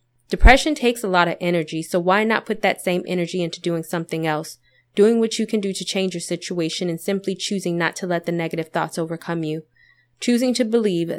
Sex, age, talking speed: female, 20-39, 215 wpm